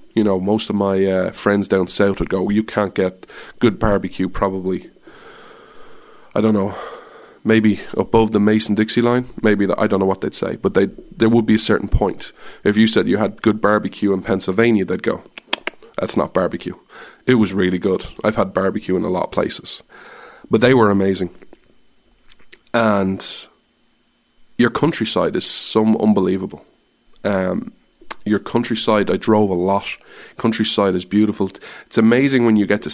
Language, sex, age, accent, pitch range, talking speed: English, male, 20-39, Irish, 95-110 Hz, 170 wpm